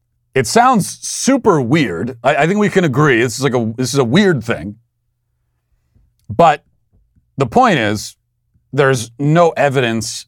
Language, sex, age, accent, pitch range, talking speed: English, male, 40-59, American, 115-145 Hz, 150 wpm